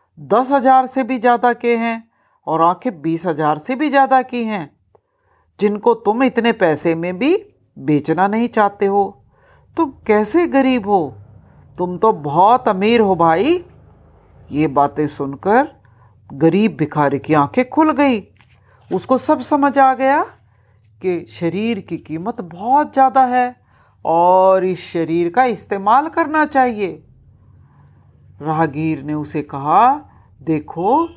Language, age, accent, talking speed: Hindi, 50-69, native, 135 wpm